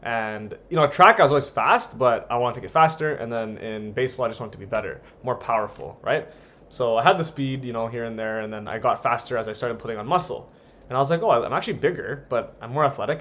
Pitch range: 115-145 Hz